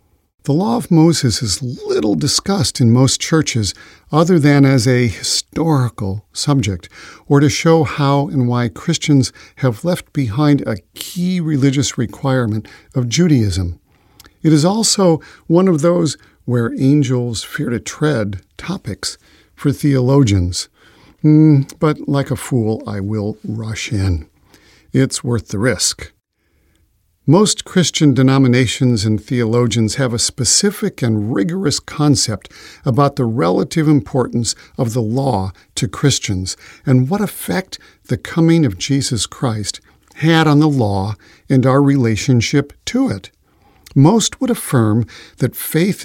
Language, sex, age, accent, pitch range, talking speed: English, male, 50-69, American, 110-150 Hz, 130 wpm